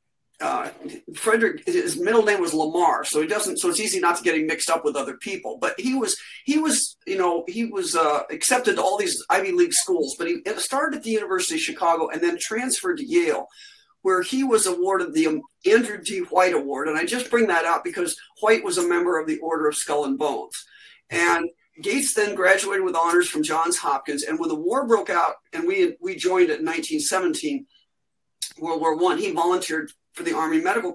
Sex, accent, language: male, American, English